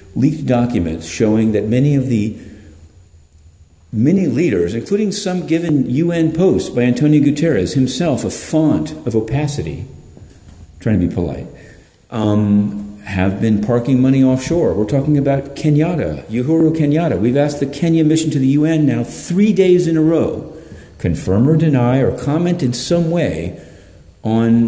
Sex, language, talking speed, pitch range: male, English, 150 wpm, 95-145 Hz